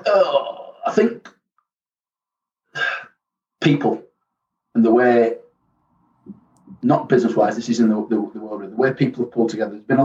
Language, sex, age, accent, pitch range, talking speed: English, male, 30-49, British, 95-130 Hz, 150 wpm